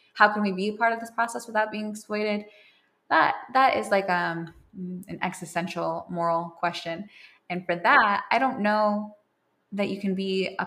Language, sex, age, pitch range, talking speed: English, female, 20-39, 175-200 Hz, 180 wpm